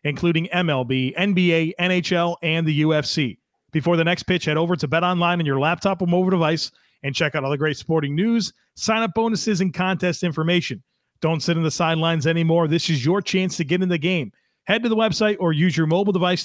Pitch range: 140-180 Hz